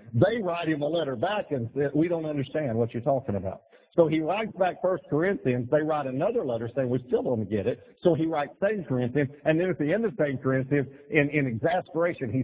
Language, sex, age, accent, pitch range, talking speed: English, male, 50-69, American, 110-145 Hz, 230 wpm